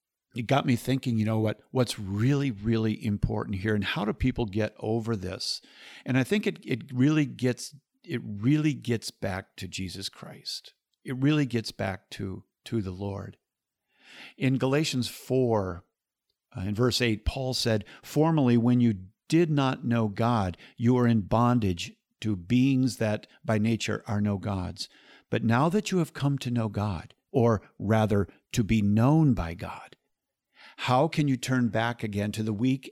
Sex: male